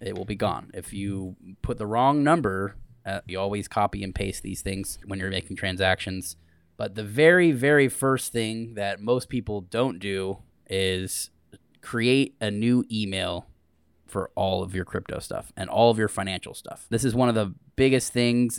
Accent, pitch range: American, 95-115 Hz